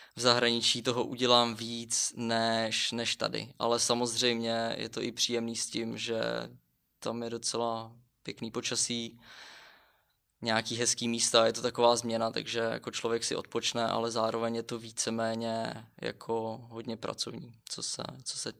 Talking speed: 140 wpm